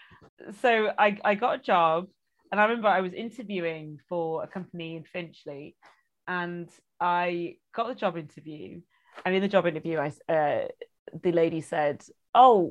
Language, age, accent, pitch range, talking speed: English, 30-49, British, 170-205 Hz, 160 wpm